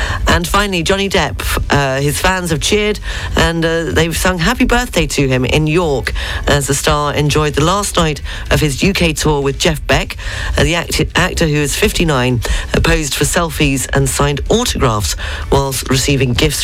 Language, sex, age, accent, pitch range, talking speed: English, female, 40-59, British, 140-180 Hz, 175 wpm